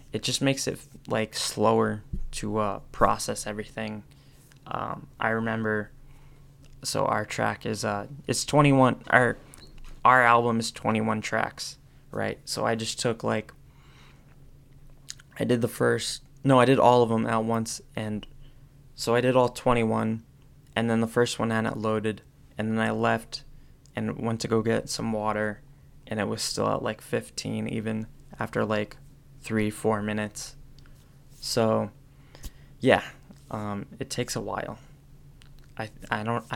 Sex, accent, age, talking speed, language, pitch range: male, American, 20-39, 150 wpm, English, 110-135 Hz